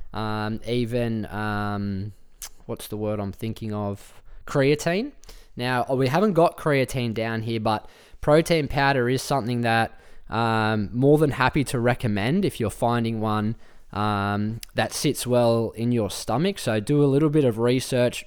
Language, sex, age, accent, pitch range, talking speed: English, male, 20-39, Australian, 110-130 Hz, 155 wpm